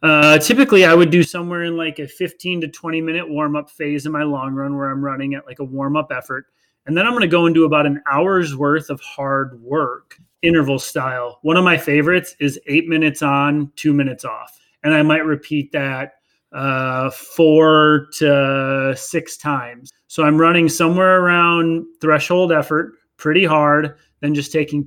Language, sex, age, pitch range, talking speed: English, male, 30-49, 140-170 Hz, 185 wpm